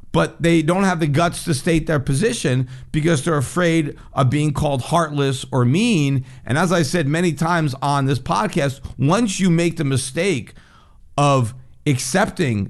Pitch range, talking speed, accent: 125-170 Hz, 165 wpm, American